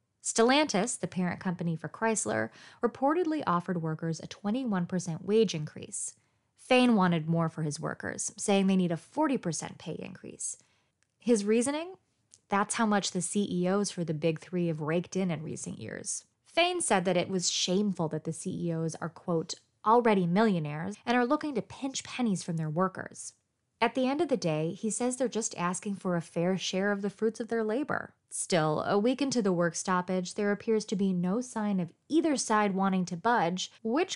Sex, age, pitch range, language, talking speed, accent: female, 20-39, 175-235 Hz, English, 185 wpm, American